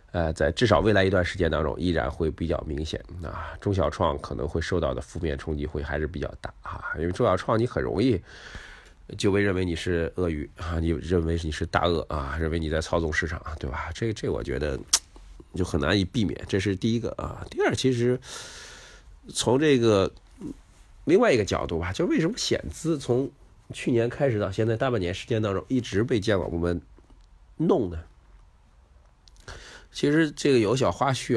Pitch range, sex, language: 80-105 Hz, male, Chinese